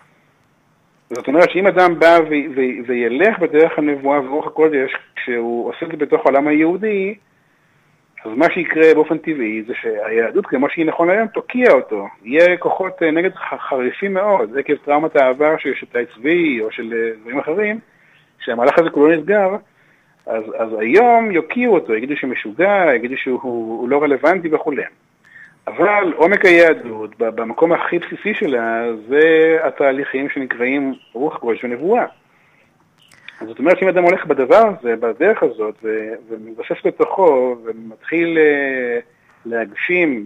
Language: Hebrew